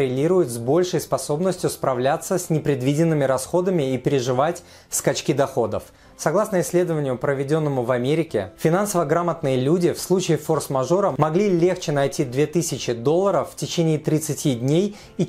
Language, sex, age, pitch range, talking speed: Russian, male, 30-49, 135-175 Hz, 125 wpm